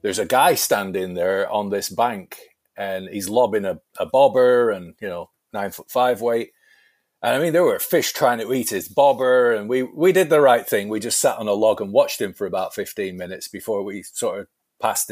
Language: English